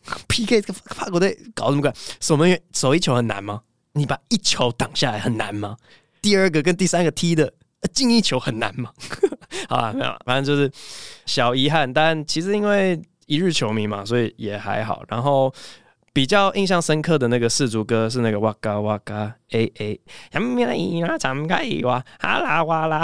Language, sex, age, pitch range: Chinese, male, 20-39, 110-155 Hz